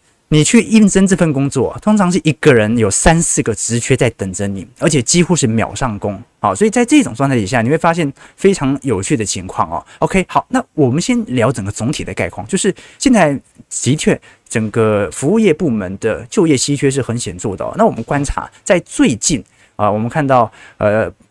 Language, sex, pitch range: Chinese, male, 110-155 Hz